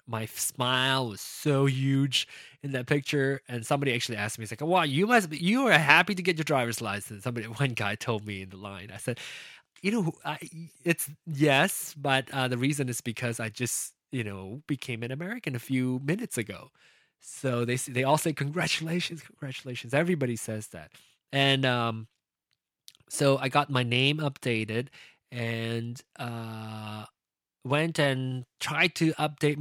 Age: 20-39